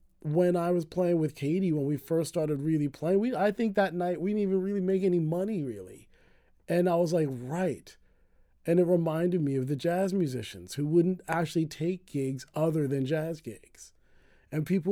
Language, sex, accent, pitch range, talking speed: English, male, American, 140-175 Hz, 195 wpm